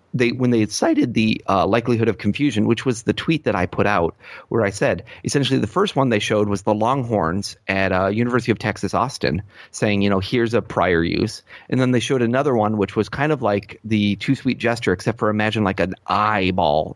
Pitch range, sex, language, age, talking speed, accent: 100-120 Hz, male, English, 30-49, 225 wpm, American